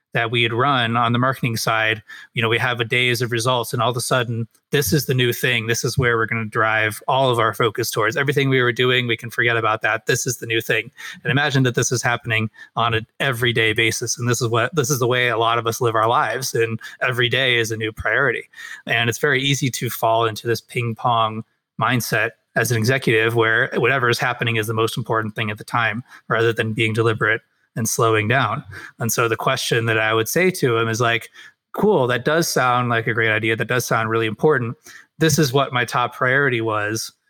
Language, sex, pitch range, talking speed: English, male, 115-135 Hz, 235 wpm